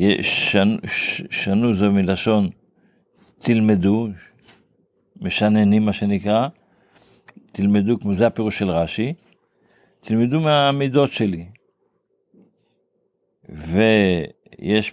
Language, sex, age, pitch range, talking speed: Hebrew, male, 50-69, 95-115 Hz, 70 wpm